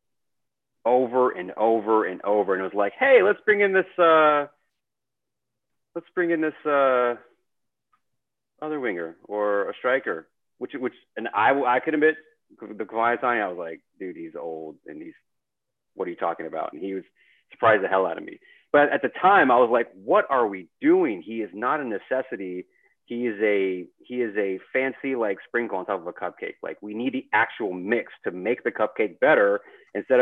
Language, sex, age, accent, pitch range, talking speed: English, male, 30-49, American, 100-155 Hz, 200 wpm